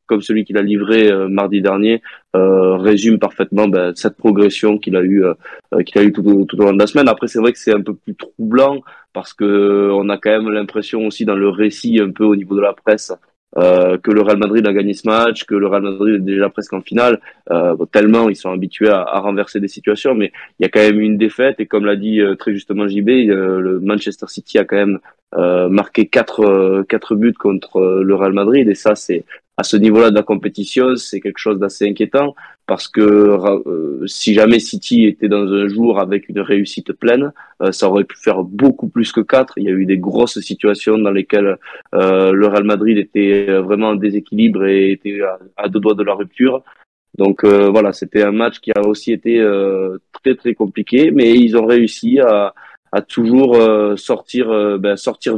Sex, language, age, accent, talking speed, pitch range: male, French, 20-39, French, 220 wpm, 100-110 Hz